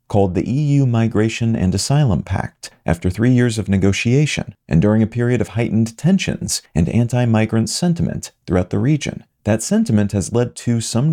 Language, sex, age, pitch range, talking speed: English, male, 40-59, 100-125 Hz, 165 wpm